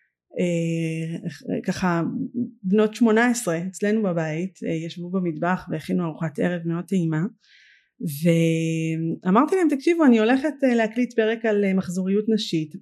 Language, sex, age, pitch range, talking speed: Hebrew, female, 30-49, 170-245 Hz, 110 wpm